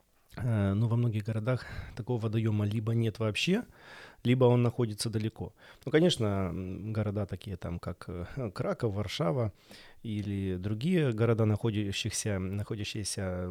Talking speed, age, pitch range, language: 110 wpm, 20-39, 95-115 Hz, Russian